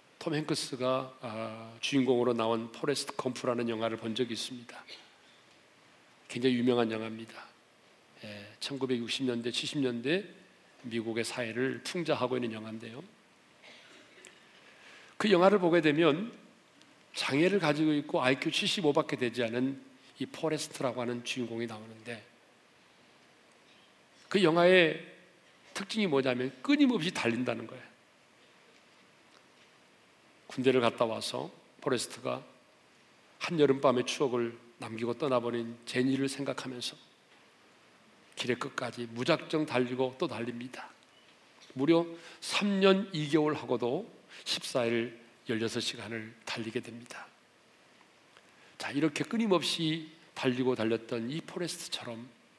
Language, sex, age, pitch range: Korean, male, 40-59, 120-155 Hz